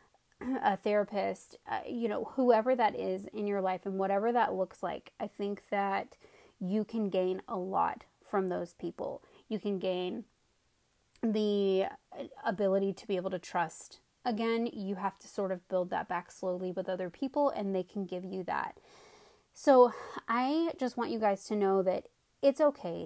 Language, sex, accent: English, female, American